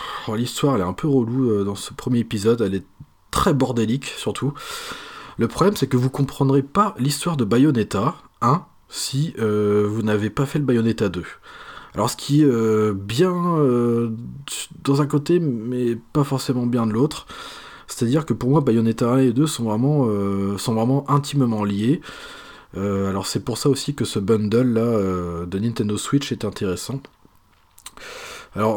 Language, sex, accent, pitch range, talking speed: French, male, French, 105-140 Hz, 175 wpm